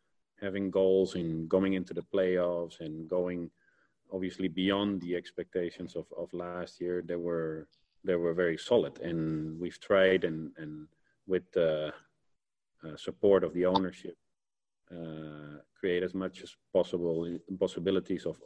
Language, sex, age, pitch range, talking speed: English, male, 40-59, 85-95 Hz, 145 wpm